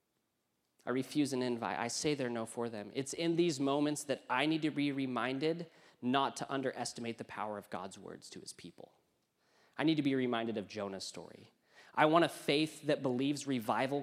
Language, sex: English, male